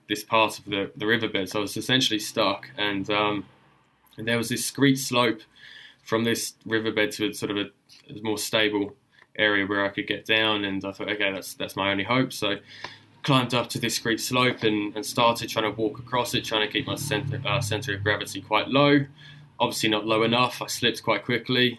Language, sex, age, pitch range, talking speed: English, male, 20-39, 105-120 Hz, 220 wpm